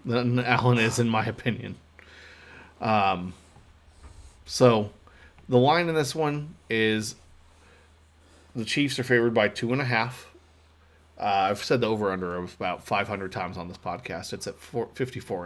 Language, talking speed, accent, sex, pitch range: English, 135 wpm, American, male, 85-120 Hz